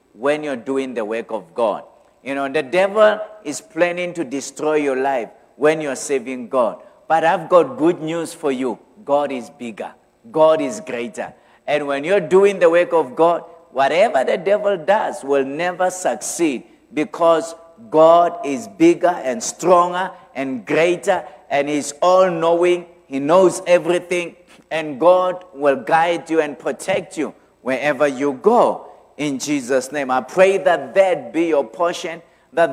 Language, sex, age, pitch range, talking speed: English, male, 50-69, 150-180 Hz, 155 wpm